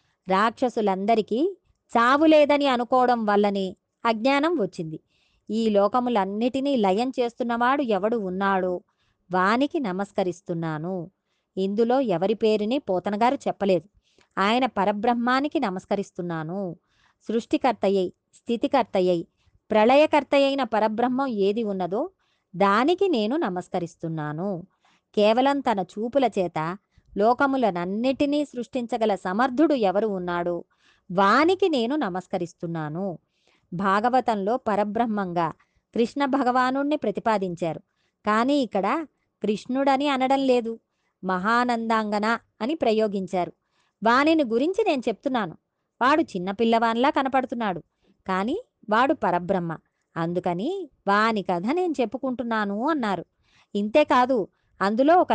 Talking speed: 80 wpm